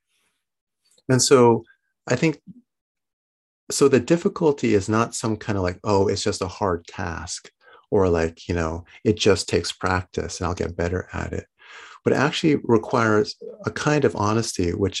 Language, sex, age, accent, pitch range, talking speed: English, male, 30-49, American, 85-105 Hz, 170 wpm